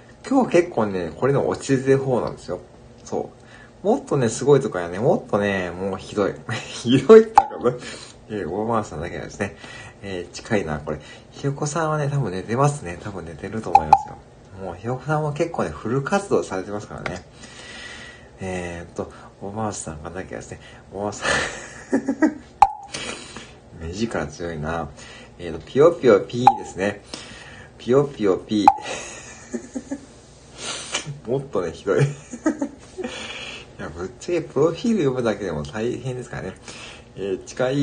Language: Japanese